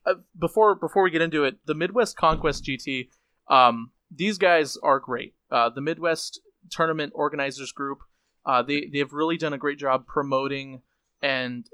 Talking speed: 165 wpm